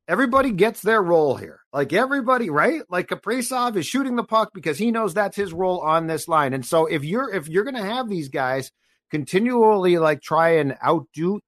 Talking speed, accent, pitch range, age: 205 wpm, American, 120-180 Hz, 50-69